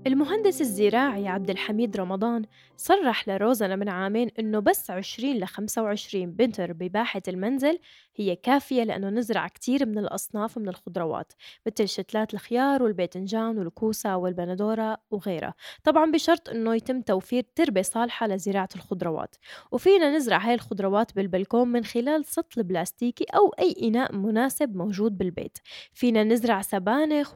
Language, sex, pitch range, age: Arabic, female, 195-250 Hz, 10-29